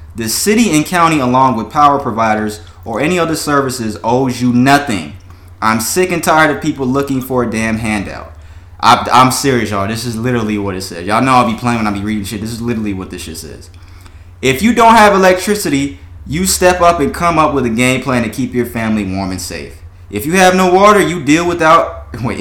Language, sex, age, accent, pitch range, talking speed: English, male, 20-39, American, 95-145 Hz, 230 wpm